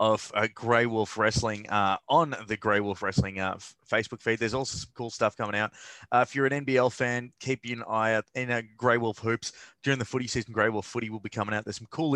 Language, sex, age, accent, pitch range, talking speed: English, male, 30-49, Australian, 105-130 Hz, 255 wpm